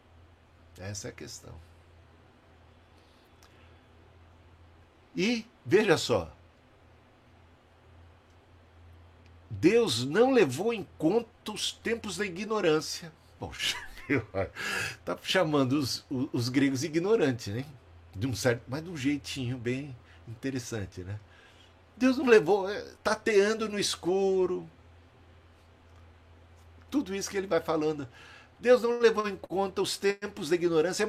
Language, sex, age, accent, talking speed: Portuguese, male, 60-79, Brazilian, 100 wpm